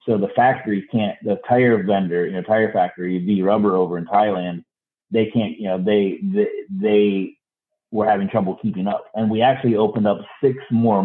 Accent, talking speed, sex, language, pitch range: American, 190 wpm, male, English, 90-115 Hz